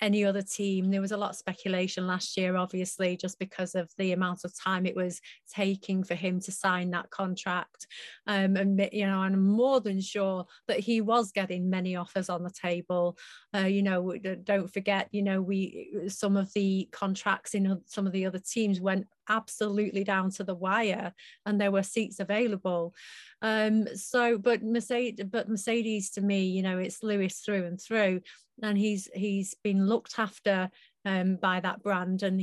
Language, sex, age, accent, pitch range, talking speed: English, female, 30-49, British, 185-210 Hz, 185 wpm